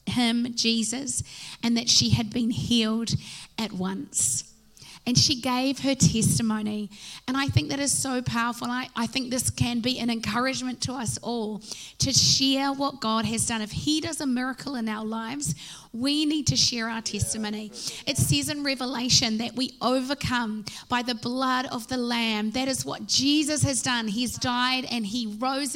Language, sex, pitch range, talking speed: English, female, 215-260 Hz, 180 wpm